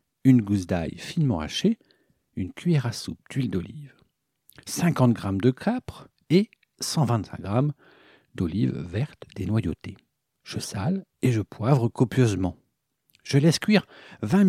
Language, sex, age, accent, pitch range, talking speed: French, male, 60-79, French, 105-160 Hz, 130 wpm